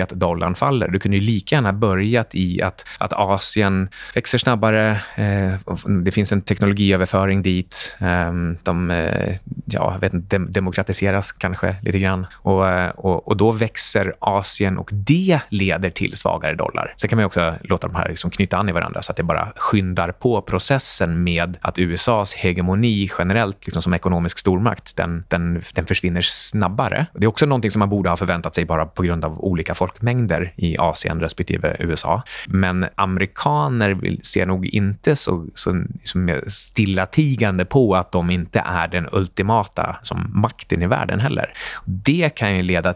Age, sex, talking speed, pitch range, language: 20-39, male, 170 wpm, 90-110 Hz, Swedish